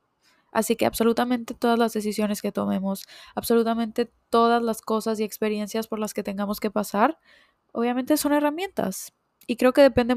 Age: 20-39